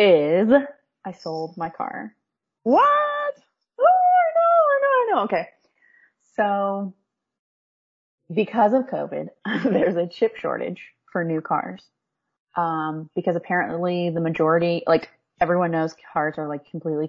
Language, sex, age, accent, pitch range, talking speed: English, female, 30-49, American, 155-215 Hz, 130 wpm